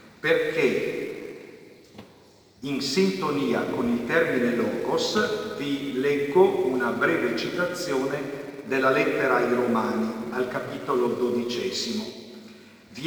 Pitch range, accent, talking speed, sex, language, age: 140-225 Hz, native, 90 wpm, male, Italian, 50-69